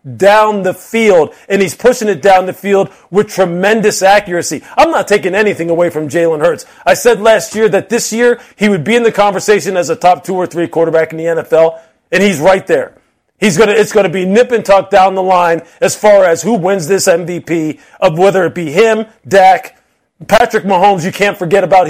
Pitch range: 185-220 Hz